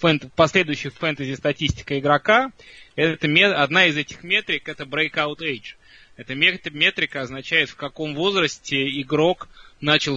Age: 20-39